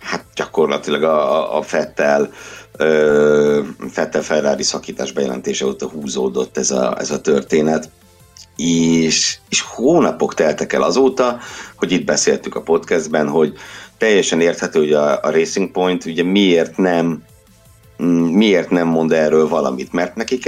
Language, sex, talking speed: Hungarian, male, 130 wpm